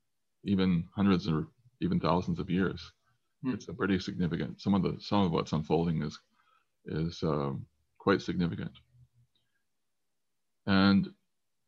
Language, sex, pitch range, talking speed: English, male, 85-115 Hz, 125 wpm